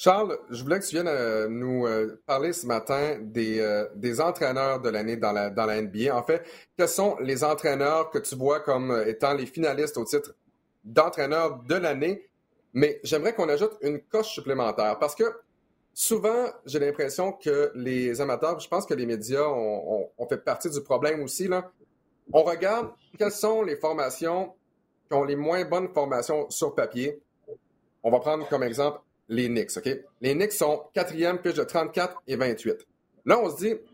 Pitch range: 135-200 Hz